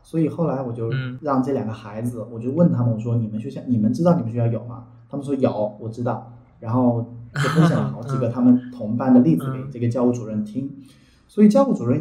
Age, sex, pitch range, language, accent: 20-39, male, 120-160 Hz, Chinese, native